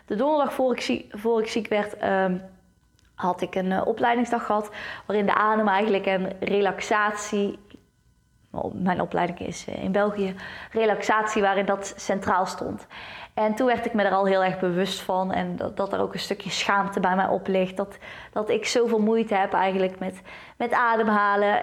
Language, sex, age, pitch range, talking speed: Dutch, female, 20-39, 190-220 Hz, 180 wpm